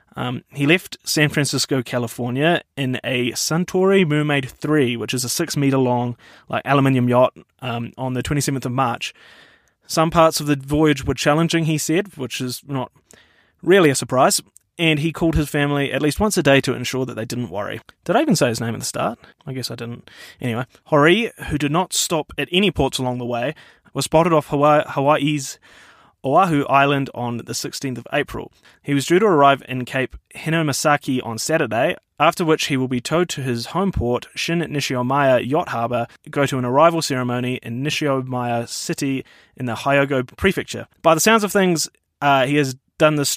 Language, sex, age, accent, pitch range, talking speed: English, male, 20-39, Australian, 125-155 Hz, 190 wpm